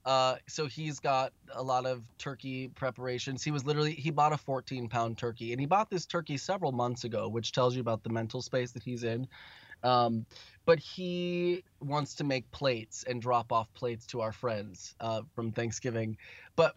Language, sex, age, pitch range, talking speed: English, male, 20-39, 115-140 Hz, 195 wpm